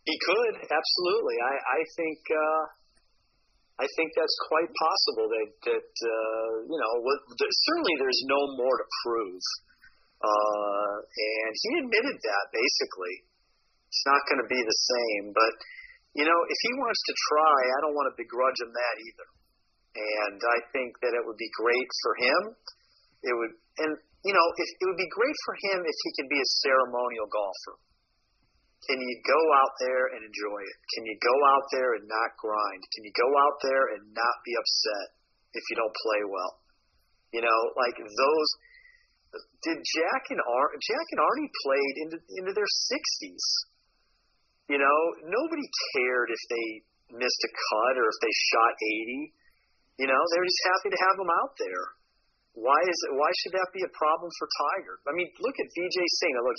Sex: male